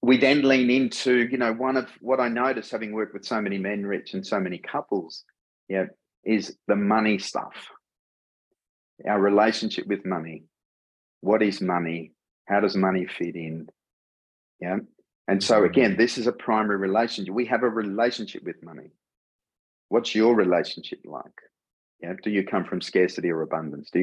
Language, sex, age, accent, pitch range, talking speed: English, male, 40-59, Australian, 90-120 Hz, 165 wpm